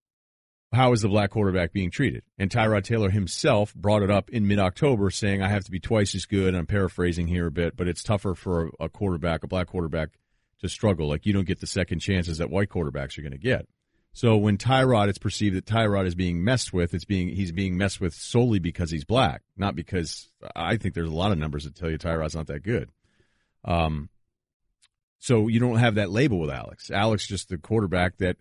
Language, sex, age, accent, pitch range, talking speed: English, male, 40-59, American, 90-110 Hz, 220 wpm